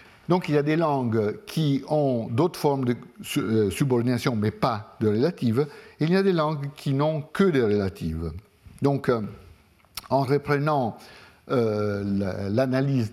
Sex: male